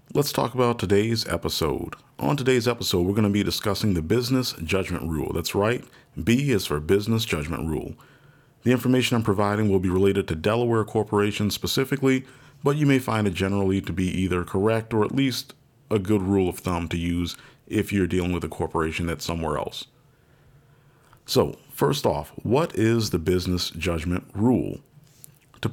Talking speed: 175 wpm